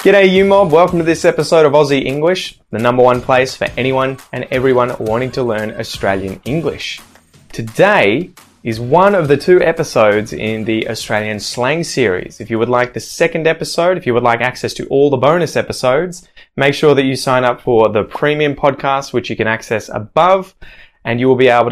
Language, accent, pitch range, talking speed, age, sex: English, Australian, 115-145 Hz, 200 wpm, 20-39, male